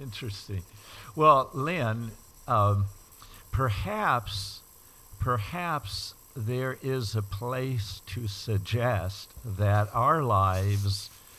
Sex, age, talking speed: male, 60-79, 80 wpm